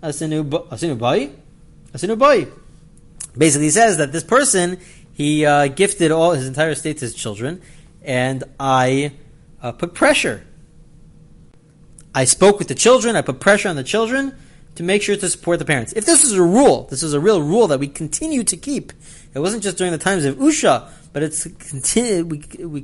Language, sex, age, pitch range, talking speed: English, male, 30-49, 140-195 Hz, 175 wpm